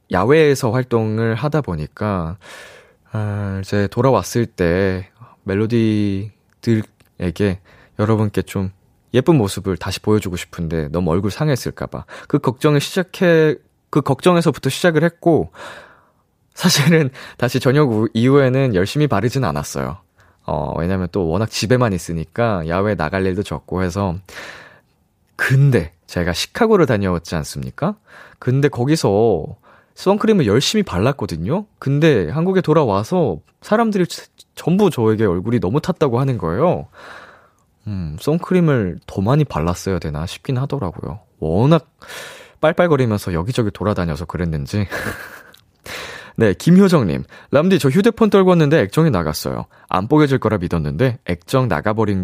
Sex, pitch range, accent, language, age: male, 95-150 Hz, native, Korean, 20-39